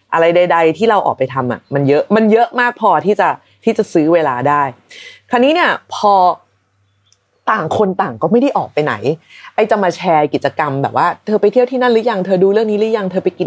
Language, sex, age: Thai, female, 30-49